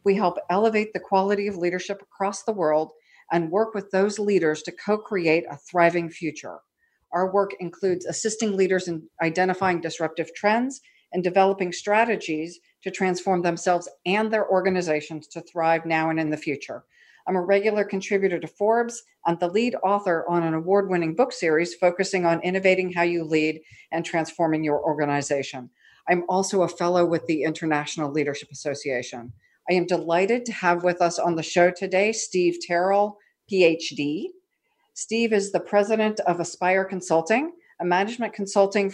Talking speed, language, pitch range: 160 wpm, English, 170-205 Hz